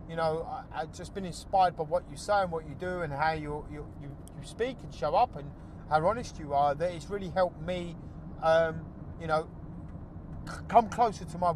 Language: English